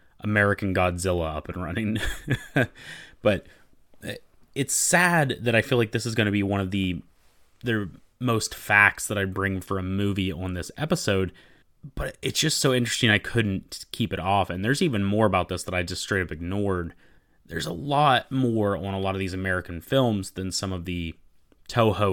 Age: 20-39